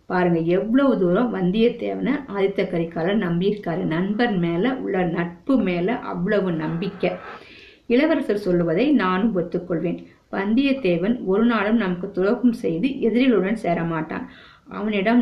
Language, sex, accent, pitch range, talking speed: Tamil, female, native, 180-235 Hz, 105 wpm